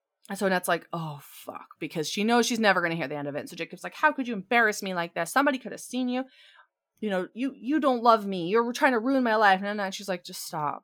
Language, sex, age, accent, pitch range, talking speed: English, female, 20-39, American, 165-245 Hz, 290 wpm